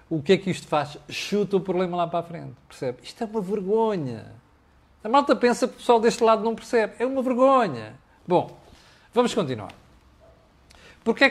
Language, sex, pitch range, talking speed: Portuguese, male, 150-230 Hz, 185 wpm